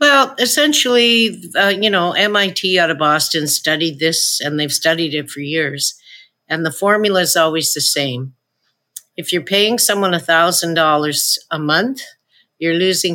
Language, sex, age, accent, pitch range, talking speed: English, female, 50-69, American, 150-195 Hz, 150 wpm